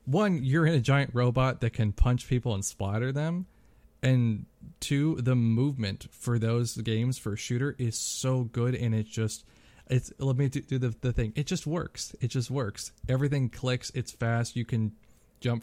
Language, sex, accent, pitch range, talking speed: English, male, American, 110-135 Hz, 190 wpm